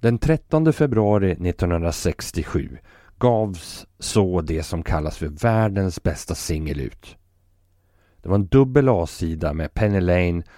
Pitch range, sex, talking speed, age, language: 85-115 Hz, male, 125 wpm, 30-49, Swedish